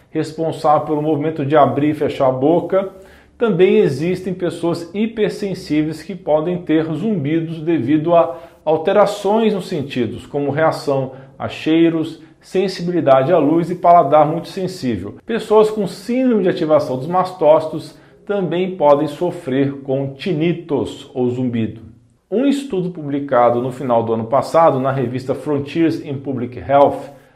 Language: Portuguese